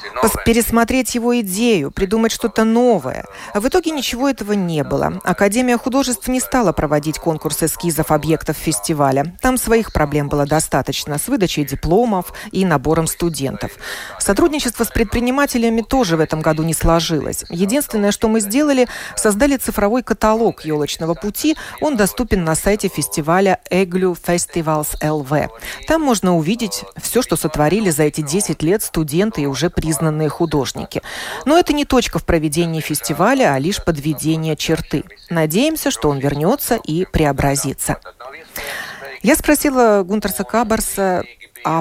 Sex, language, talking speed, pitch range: female, Russian, 135 wpm, 160-235 Hz